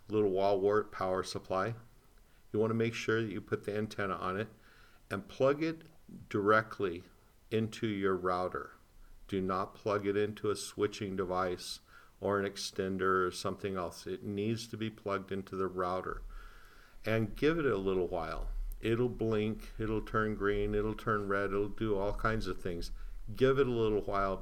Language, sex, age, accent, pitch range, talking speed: English, male, 50-69, American, 95-110 Hz, 170 wpm